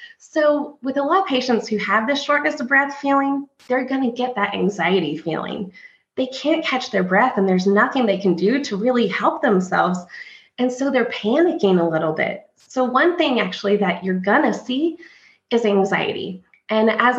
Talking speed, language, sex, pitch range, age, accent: 190 wpm, English, female, 195-280 Hz, 20-39, American